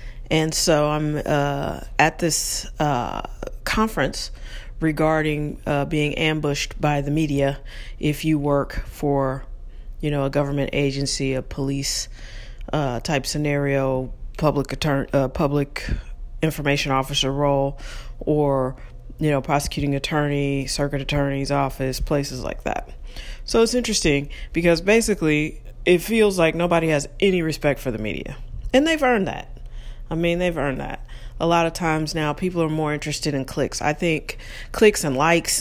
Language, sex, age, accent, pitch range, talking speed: English, female, 40-59, American, 135-165 Hz, 145 wpm